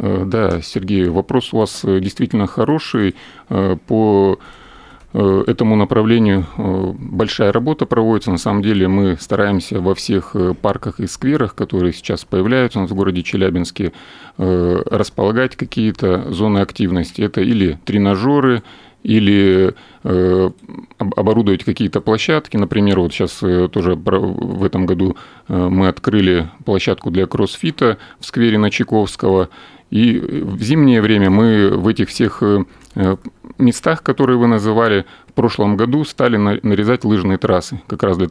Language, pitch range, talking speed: Russian, 95-115 Hz, 125 wpm